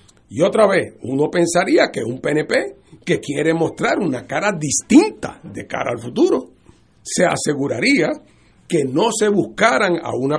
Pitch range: 170-235 Hz